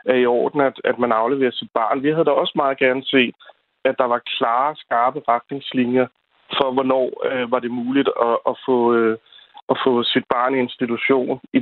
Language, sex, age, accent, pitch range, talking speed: Danish, male, 40-59, native, 120-145 Hz, 195 wpm